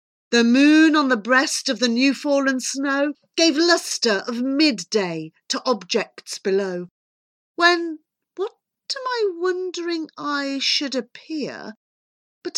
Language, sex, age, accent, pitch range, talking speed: English, female, 40-59, British, 245-355 Hz, 125 wpm